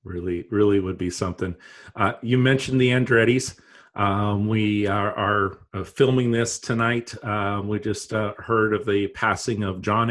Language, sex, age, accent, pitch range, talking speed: English, male, 40-59, American, 90-110 Hz, 160 wpm